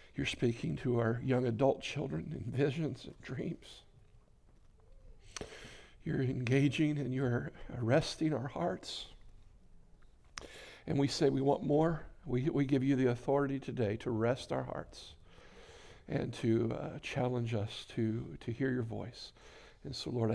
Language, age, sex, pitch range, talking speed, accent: English, 60-79, male, 120-135 Hz, 140 wpm, American